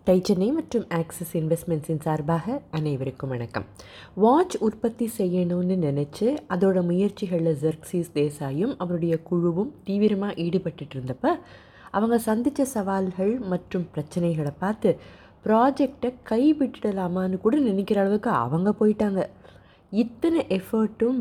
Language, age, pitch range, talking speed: Tamil, 20-39, 160-215 Hz, 95 wpm